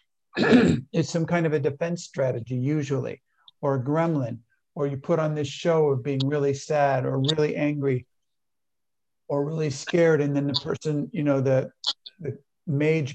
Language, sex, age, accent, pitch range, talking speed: English, male, 50-69, American, 135-155 Hz, 165 wpm